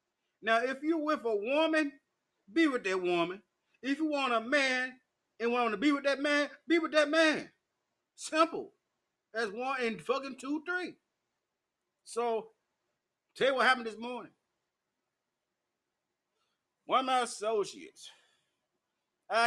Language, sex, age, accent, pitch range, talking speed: English, male, 30-49, American, 195-310 Hz, 135 wpm